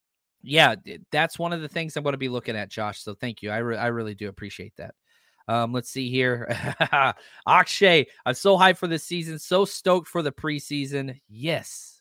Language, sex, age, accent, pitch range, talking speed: English, male, 30-49, American, 120-175 Hz, 200 wpm